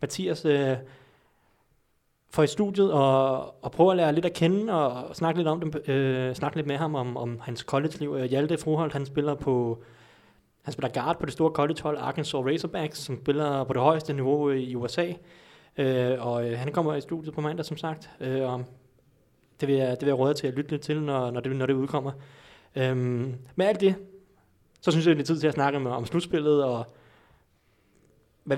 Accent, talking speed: native, 195 wpm